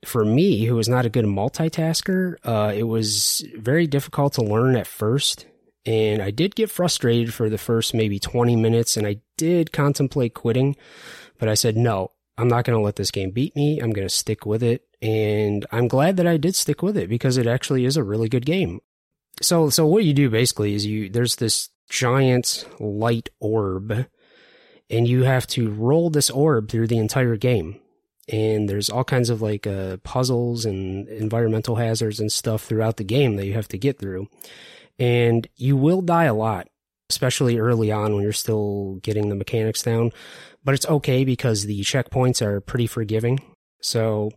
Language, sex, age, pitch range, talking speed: English, male, 20-39, 110-130 Hz, 190 wpm